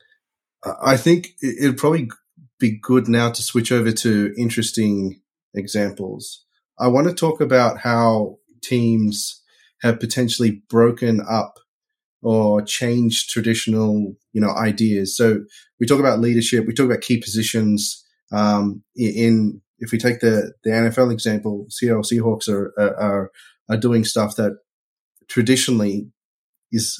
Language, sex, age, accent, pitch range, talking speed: English, male, 30-49, Australian, 105-130 Hz, 130 wpm